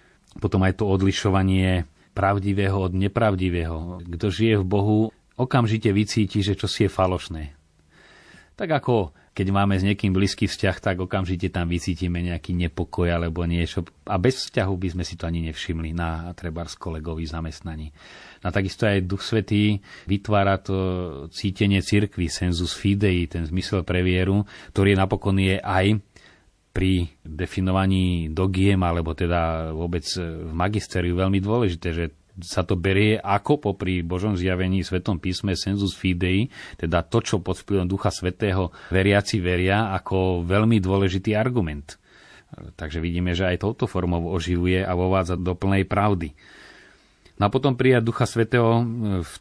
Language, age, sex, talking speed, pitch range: Slovak, 30-49, male, 140 wpm, 90-100 Hz